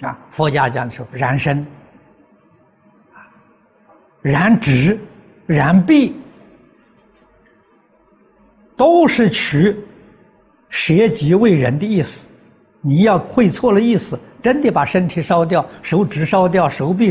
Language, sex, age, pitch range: Chinese, male, 60-79, 150-225 Hz